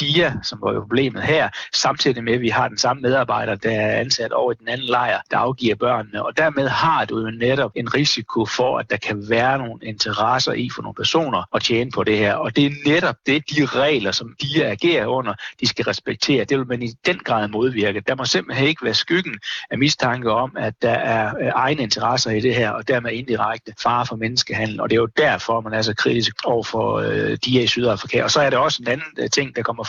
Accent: native